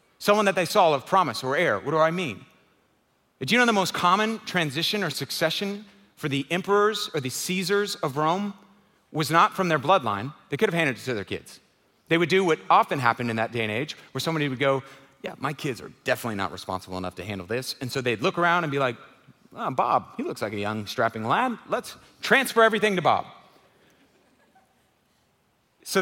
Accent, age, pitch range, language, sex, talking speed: American, 40-59, 140-200 Hz, English, male, 210 wpm